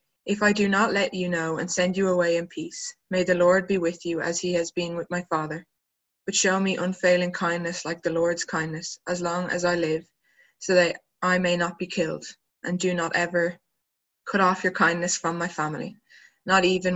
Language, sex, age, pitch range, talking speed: English, female, 20-39, 170-190 Hz, 210 wpm